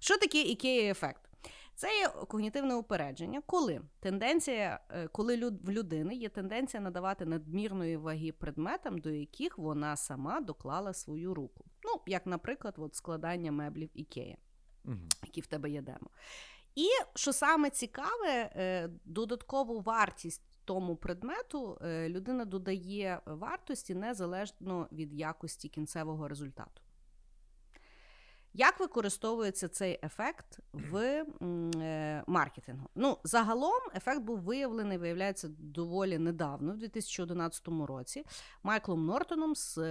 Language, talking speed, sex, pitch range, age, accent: Ukrainian, 115 wpm, female, 160-230 Hz, 30-49, native